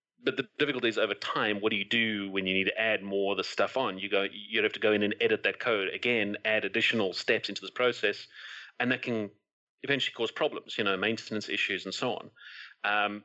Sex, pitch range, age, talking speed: male, 105-135 Hz, 30-49, 235 wpm